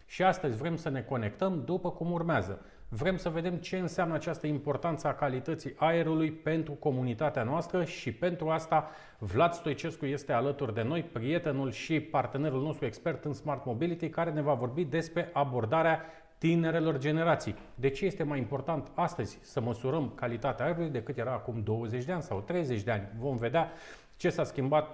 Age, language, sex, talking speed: 40-59, Romanian, male, 175 wpm